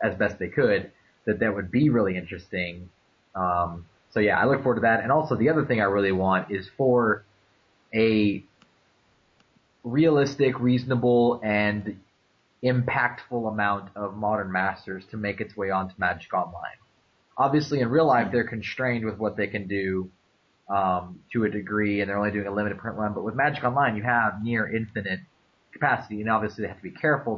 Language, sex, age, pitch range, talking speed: English, male, 20-39, 100-120 Hz, 180 wpm